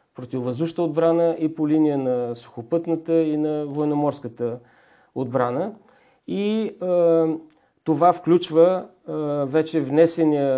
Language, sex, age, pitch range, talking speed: Bulgarian, male, 50-69, 135-160 Hz, 100 wpm